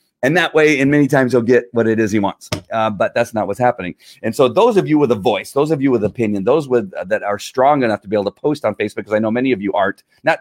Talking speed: 310 wpm